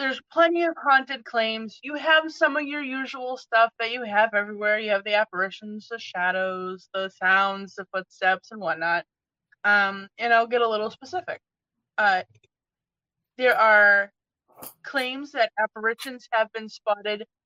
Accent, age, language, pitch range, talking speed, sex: American, 20-39, English, 200-270 Hz, 150 wpm, female